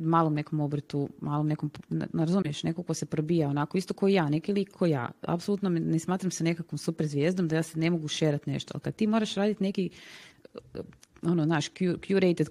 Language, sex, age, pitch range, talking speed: Croatian, female, 30-49, 145-175 Hz, 190 wpm